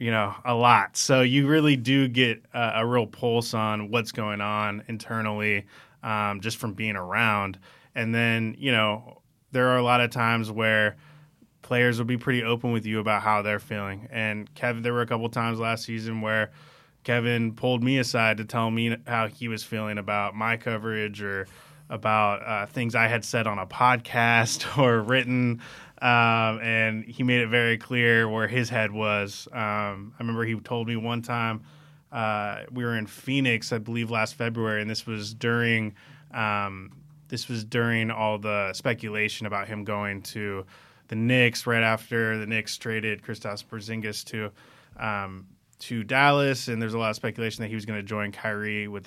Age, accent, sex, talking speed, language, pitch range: 20-39, American, male, 185 wpm, English, 105-120 Hz